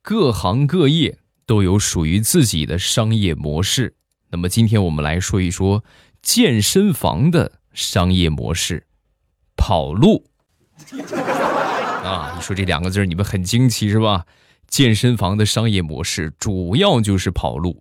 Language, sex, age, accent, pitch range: Chinese, male, 20-39, native, 90-125 Hz